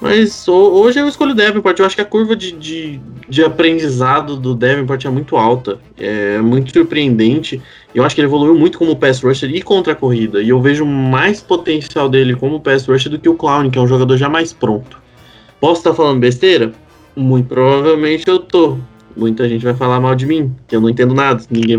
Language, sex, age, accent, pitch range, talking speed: Portuguese, male, 20-39, Brazilian, 125-165 Hz, 215 wpm